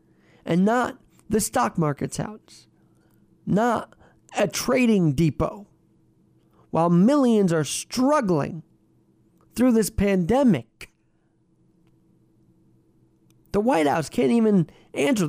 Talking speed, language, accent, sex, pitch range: 90 wpm, English, American, male, 150-225 Hz